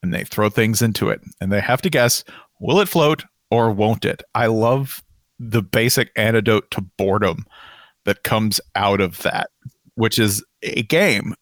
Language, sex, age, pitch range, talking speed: English, male, 40-59, 105-140 Hz, 175 wpm